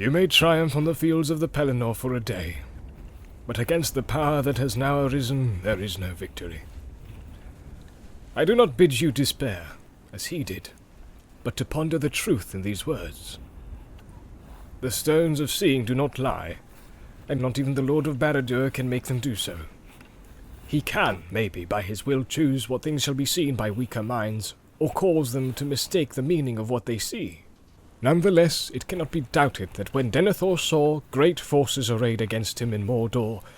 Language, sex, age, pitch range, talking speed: English, male, 30-49, 110-150 Hz, 180 wpm